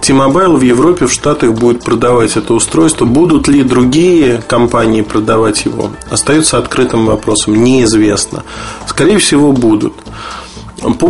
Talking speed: 125 wpm